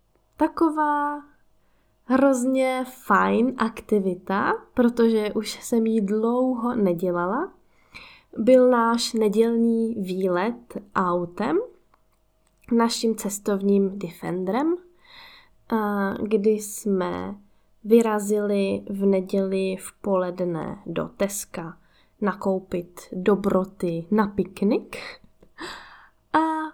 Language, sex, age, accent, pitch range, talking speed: Czech, female, 10-29, native, 200-245 Hz, 70 wpm